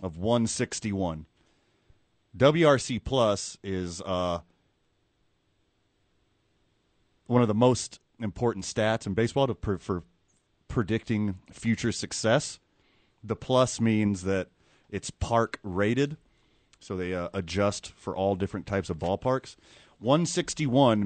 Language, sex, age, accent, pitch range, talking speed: English, male, 30-49, American, 95-120 Hz, 110 wpm